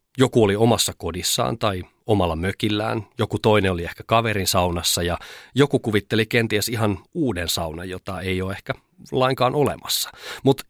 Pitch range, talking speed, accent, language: 90-120 Hz, 150 wpm, native, Finnish